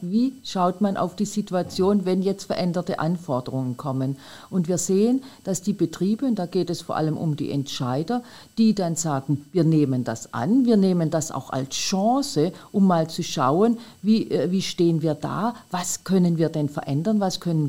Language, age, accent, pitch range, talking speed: German, 50-69, German, 150-200 Hz, 185 wpm